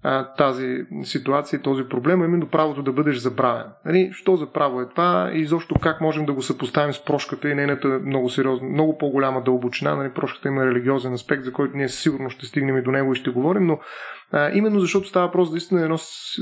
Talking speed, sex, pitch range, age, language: 200 wpm, male, 140-170 Hz, 30-49, Bulgarian